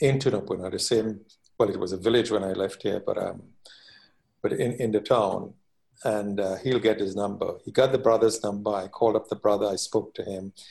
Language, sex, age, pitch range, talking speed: English, male, 60-79, 100-120 Hz, 225 wpm